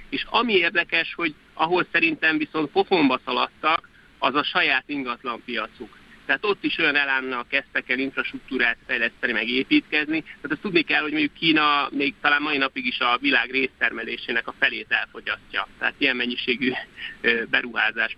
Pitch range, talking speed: 130-170 Hz, 150 wpm